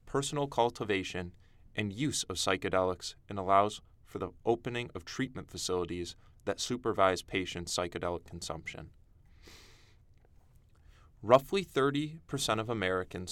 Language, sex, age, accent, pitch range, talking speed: English, male, 20-39, American, 90-110 Hz, 105 wpm